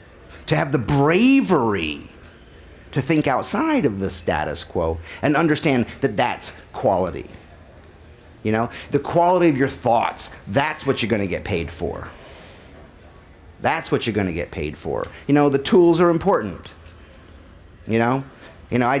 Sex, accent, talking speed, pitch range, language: male, American, 160 wpm, 95-140 Hz, English